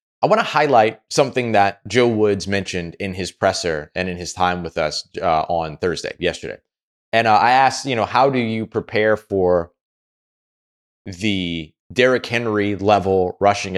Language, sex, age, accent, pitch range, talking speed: English, male, 20-39, American, 90-120 Hz, 165 wpm